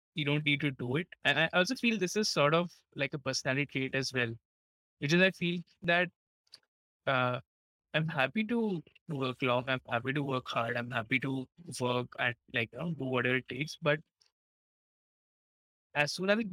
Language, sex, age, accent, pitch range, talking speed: English, male, 20-39, Indian, 125-160 Hz, 185 wpm